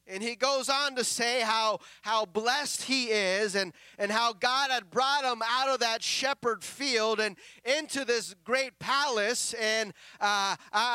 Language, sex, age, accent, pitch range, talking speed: English, male, 30-49, American, 245-310 Hz, 165 wpm